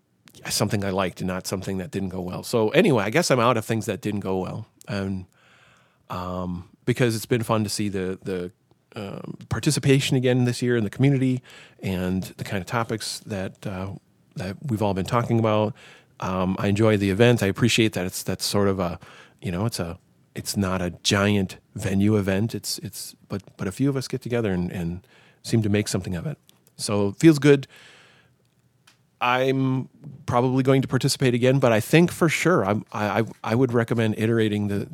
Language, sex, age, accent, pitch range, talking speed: English, male, 40-59, American, 100-135 Hz, 200 wpm